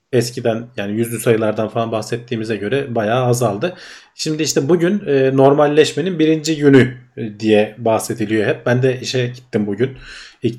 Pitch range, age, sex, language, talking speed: 110-130 Hz, 40-59, male, Turkish, 145 wpm